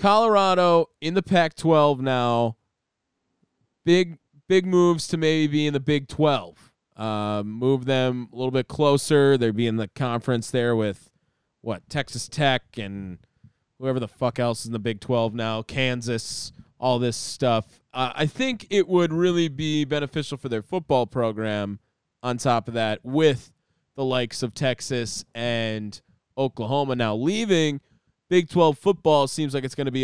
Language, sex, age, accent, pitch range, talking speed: English, male, 20-39, American, 115-150 Hz, 165 wpm